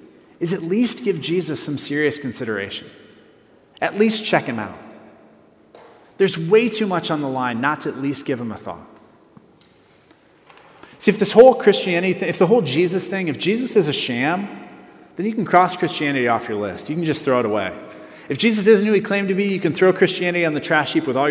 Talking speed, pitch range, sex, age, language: 210 wpm, 140-195 Hz, male, 30-49, English